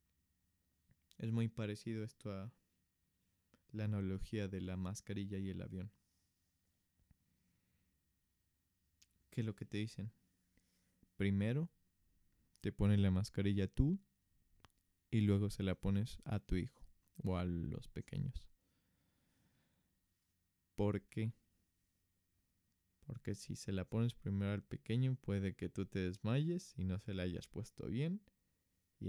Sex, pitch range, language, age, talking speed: male, 90-105 Hz, Spanish, 20-39, 125 wpm